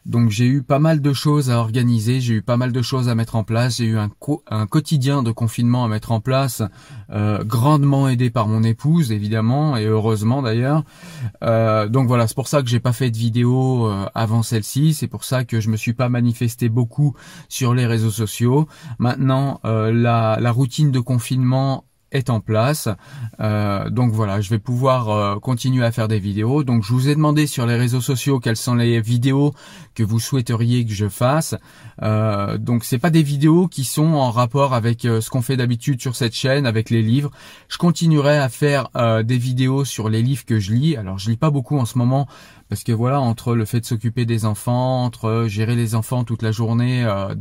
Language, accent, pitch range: French, French, 115-135 Hz